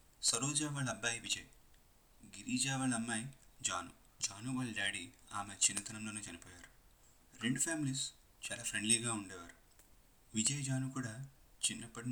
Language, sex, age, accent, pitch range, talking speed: Telugu, male, 30-49, native, 100-120 Hz, 115 wpm